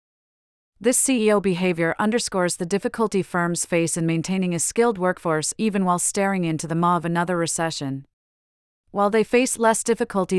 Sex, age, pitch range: female, 30-49, 165-205 Hz